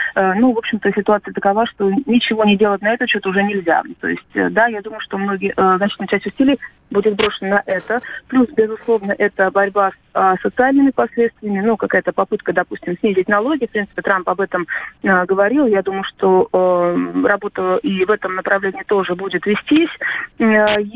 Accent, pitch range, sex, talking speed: native, 195-225 Hz, female, 165 wpm